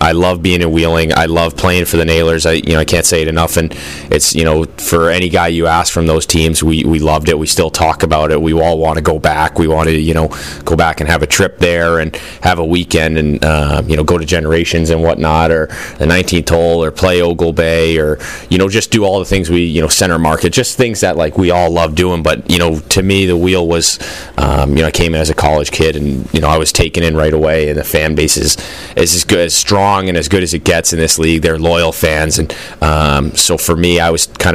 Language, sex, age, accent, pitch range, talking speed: English, male, 30-49, American, 75-85 Hz, 270 wpm